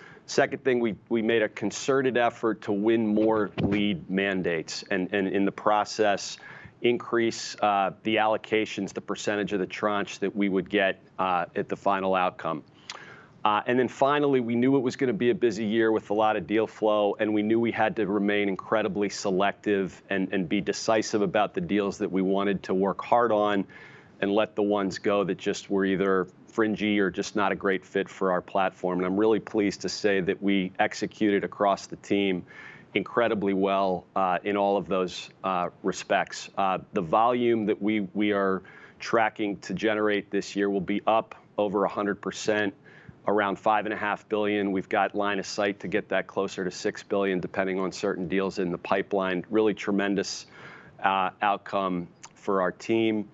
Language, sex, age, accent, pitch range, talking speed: English, male, 40-59, American, 95-110 Hz, 185 wpm